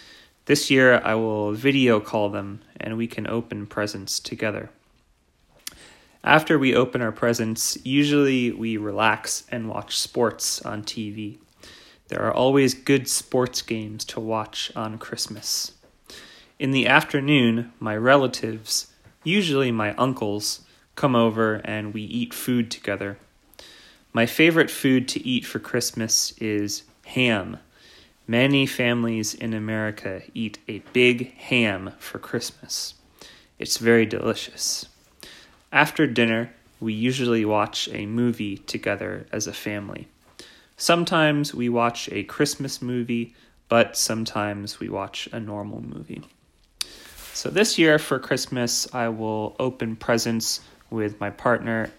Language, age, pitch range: Japanese, 30-49, 105-125 Hz